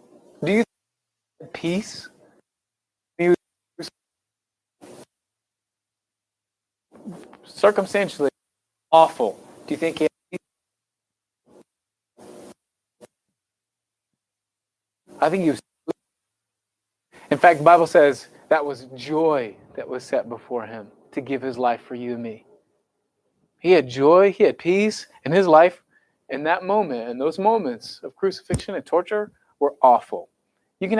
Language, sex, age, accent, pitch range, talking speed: English, male, 30-49, American, 120-185 Hz, 110 wpm